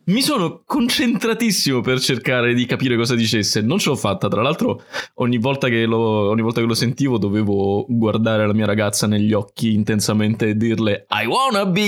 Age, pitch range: 20-39, 105-135 Hz